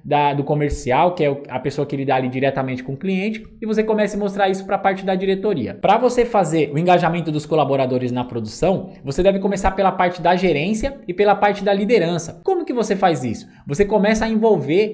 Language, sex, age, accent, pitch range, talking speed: Portuguese, male, 20-39, Brazilian, 145-195 Hz, 215 wpm